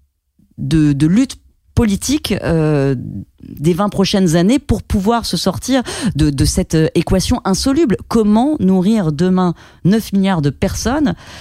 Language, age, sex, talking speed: French, 30-49, female, 130 wpm